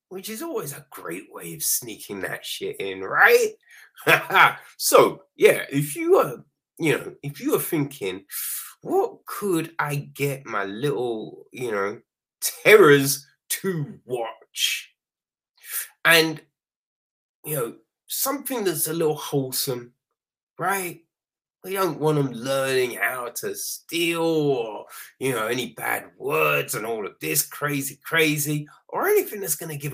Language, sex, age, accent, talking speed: English, male, 20-39, British, 140 wpm